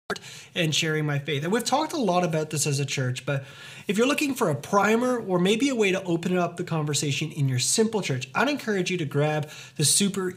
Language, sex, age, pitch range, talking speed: English, male, 30-49, 140-180 Hz, 235 wpm